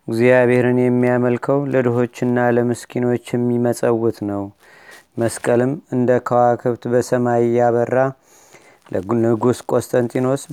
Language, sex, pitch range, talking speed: Amharic, male, 120-130 Hz, 85 wpm